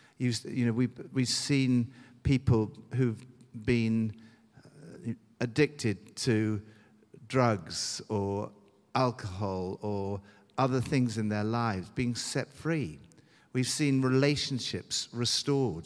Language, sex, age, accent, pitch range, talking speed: English, male, 50-69, British, 105-140 Hz, 95 wpm